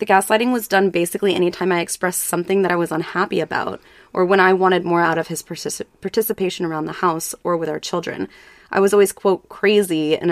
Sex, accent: female, American